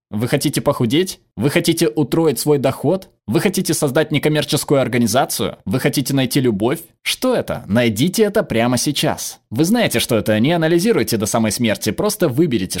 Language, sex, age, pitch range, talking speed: Russian, male, 20-39, 120-180 Hz, 160 wpm